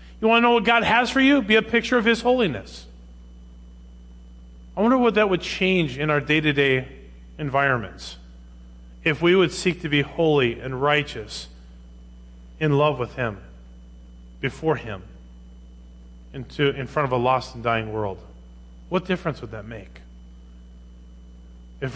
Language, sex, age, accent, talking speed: English, male, 40-59, American, 150 wpm